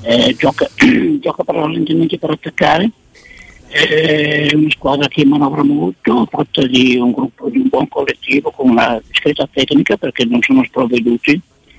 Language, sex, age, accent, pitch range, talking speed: Italian, male, 60-79, native, 135-195 Hz, 155 wpm